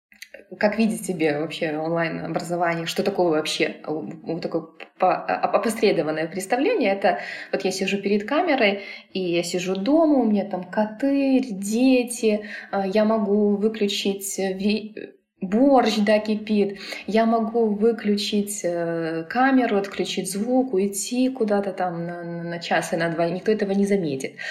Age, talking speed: 20-39, 125 wpm